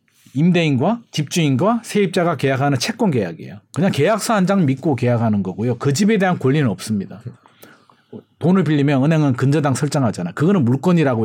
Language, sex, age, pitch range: Korean, male, 40-59, 130-200 Hz